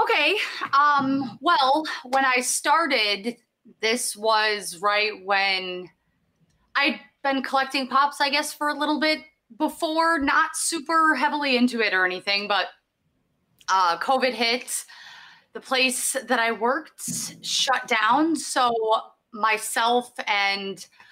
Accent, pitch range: American, 215-280 Hz